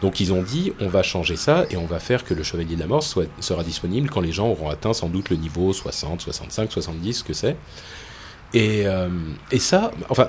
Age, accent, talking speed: 30-49, French, 240 wpm